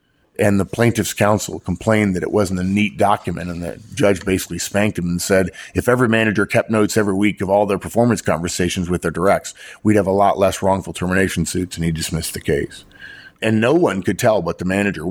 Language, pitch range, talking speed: English, 90-110 Hz, 220 wpm